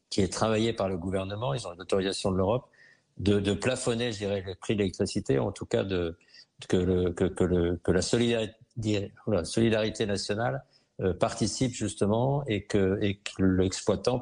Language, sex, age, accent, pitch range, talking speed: French, male, 50-69, French, 100-120 Hz, 185 wpm